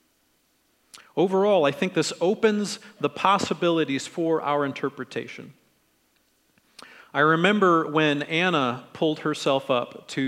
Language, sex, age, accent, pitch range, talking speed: English, male, 40-59, American, 145-195 Hz, 105 wpm